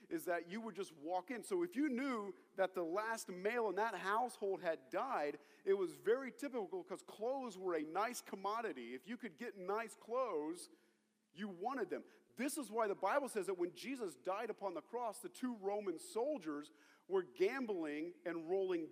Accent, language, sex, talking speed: American, English, male, 190 wpm